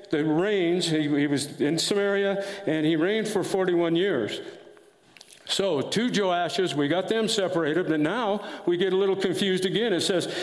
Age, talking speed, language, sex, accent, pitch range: 60-79, 175 wpm, English, male, American, 165-200 Hz